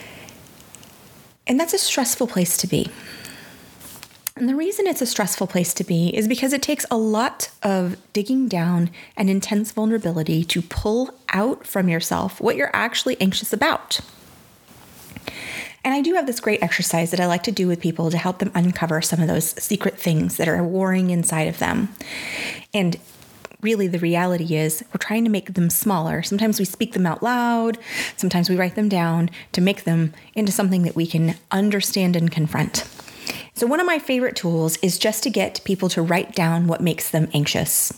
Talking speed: 185 wpm